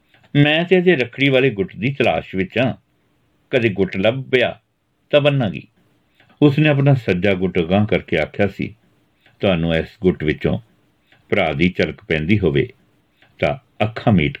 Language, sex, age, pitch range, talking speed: Punjabi, male, 60-79, 95-135 Hz, 145 wpm